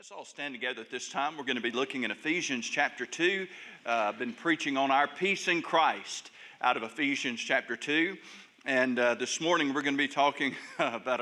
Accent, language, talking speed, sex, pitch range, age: American, English, 215 wpm, male, 130-180 Hz, 50-69